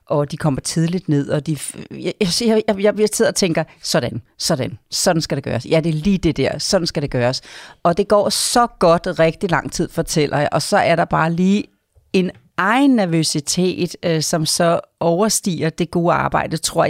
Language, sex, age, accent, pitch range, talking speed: Danish, female, 40-59, native, 155-195 Hz, 200 wpm